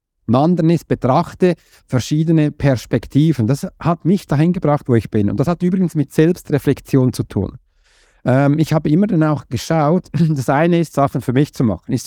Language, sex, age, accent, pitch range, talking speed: German, male, 50-69, German, 130-180 Hz, 180 wpm